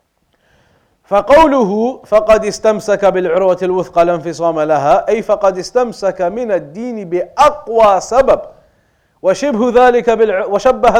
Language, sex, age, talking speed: English, male, 40-59, 95 wpm